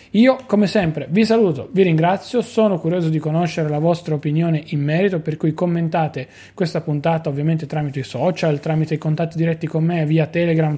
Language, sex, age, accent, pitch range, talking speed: Italian, male, 20-39, native, 150-185 Hz, 185 wpm